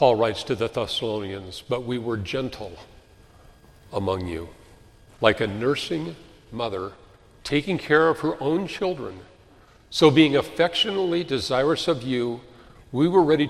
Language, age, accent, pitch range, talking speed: English, 50-69, American, 110-150 Hz, 135 wpm